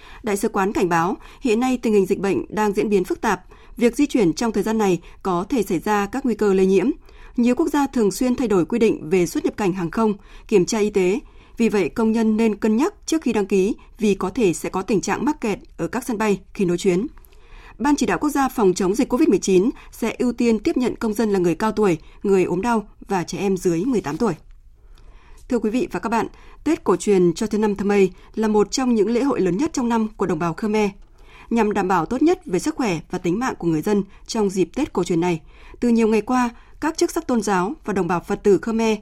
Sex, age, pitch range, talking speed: female, 20-39, 185-245 Hz, 260 wpm